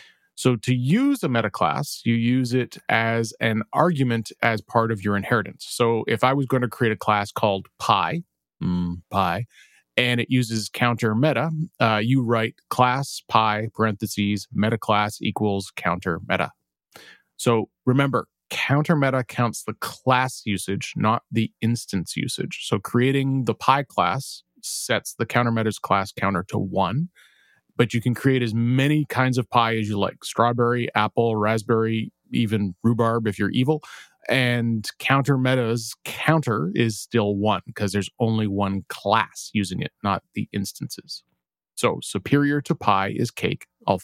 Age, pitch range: 30-49, 105-125 Hz